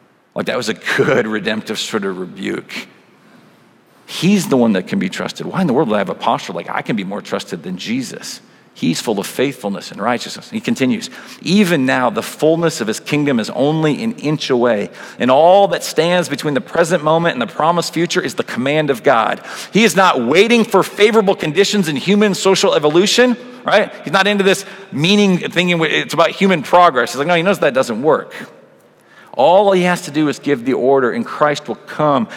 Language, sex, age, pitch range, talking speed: English, male, 40-59, 150-195 Hz, 210 wpm